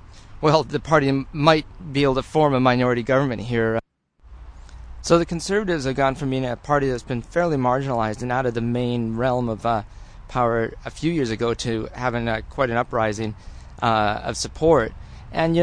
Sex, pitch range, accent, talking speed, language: male, 110-140 Hz, American, 190 wpm, English